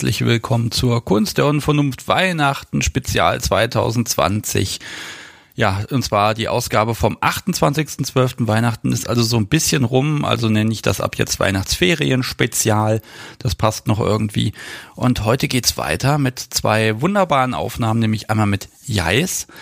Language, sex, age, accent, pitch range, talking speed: German, male, 40-59, German, 110-130 Hz, 145 wpm